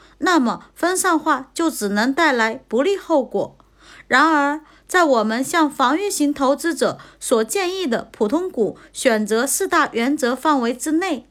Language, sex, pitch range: Chinese, female, 255-335 Hz